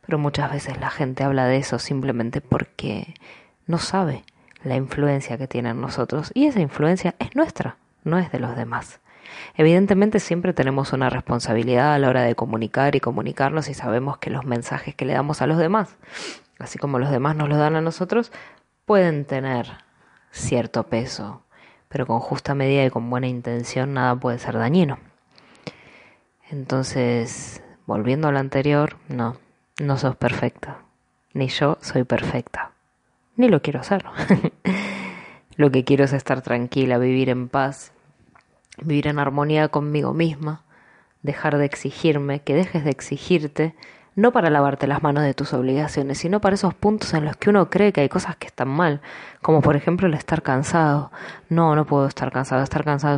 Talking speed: 170 wpm